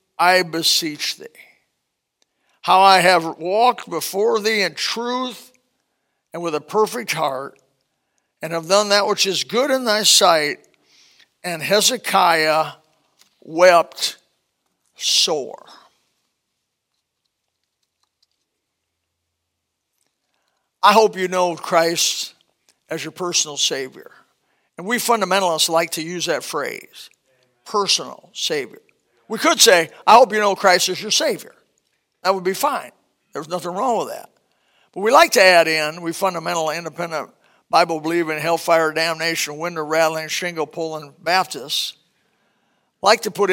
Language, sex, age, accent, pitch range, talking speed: English, male, 50-69, American, 165-220 Hz, 125 wpm